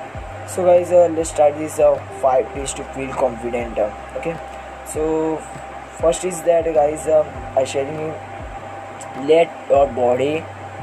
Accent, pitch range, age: native, 125-165 Hz, 20-39